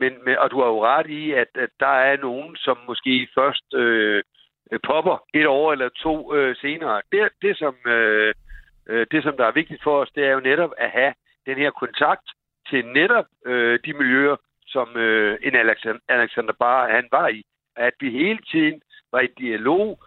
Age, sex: 60-79, male